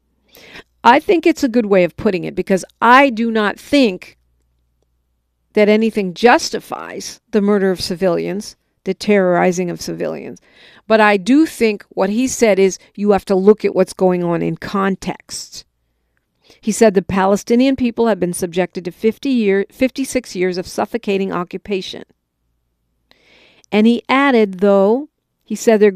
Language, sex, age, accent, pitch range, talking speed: English, female, 50-69, American, 175-225 Hz, 155 wpm